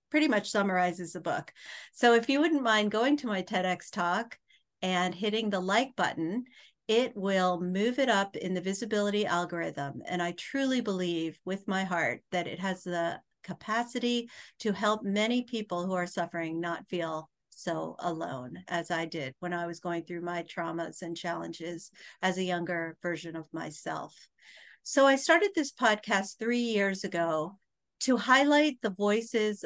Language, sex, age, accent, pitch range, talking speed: English, female, 50-69, American, 175-230 Hz, 165 wpm